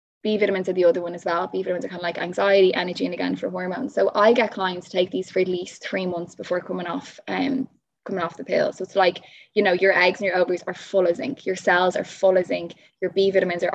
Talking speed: 280 wpm